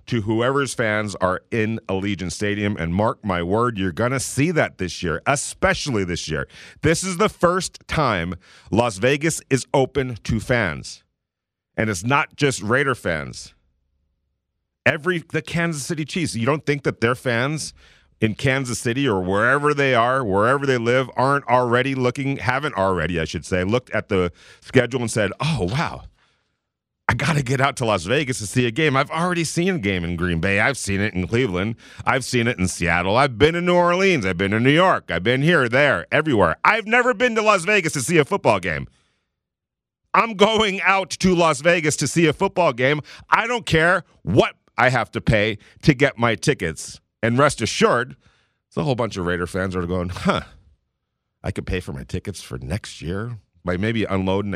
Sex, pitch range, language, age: male, 95-150 Hz, English, 40-59